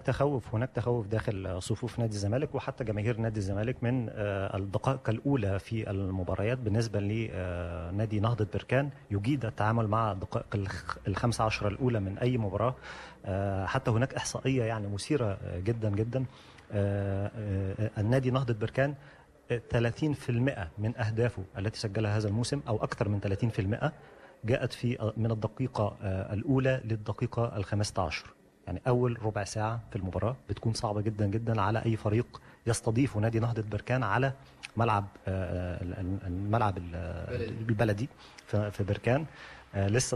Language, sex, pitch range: Arabic, male, 105-125 Hz